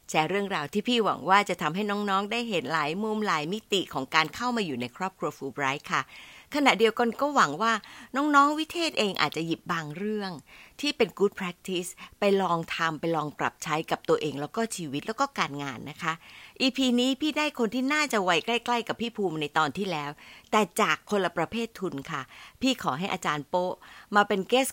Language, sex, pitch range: Thai, female, 160-215 Hz